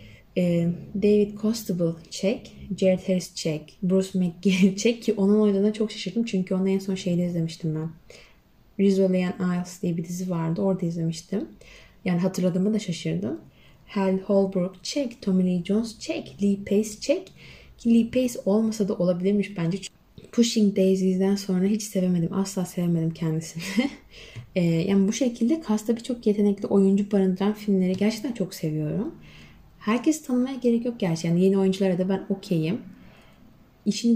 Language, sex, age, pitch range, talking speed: Turkish, female, 20-39, 170-210 Hz, 145 wpm